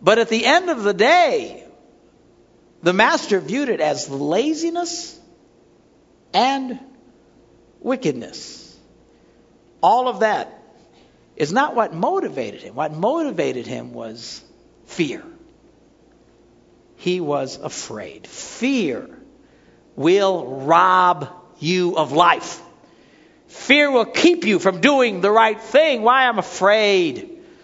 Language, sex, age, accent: English, male, 60-79, American